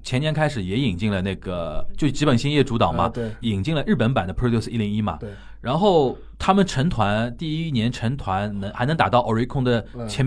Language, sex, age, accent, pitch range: Chinese, male, 20-39, native, 110-165 Hz